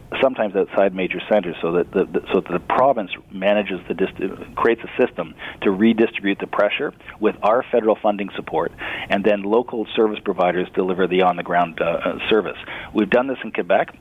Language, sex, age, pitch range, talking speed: English, male, 40-59, 95-110 Hz, 170 wpm